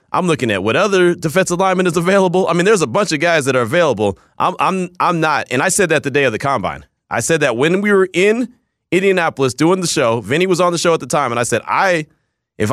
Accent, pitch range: American, 135-190 Hz